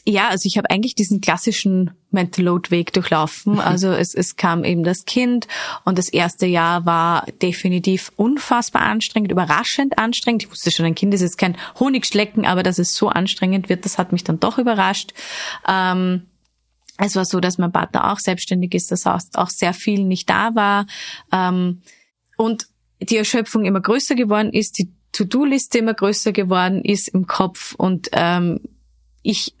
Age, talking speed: 20-39, 170 wpm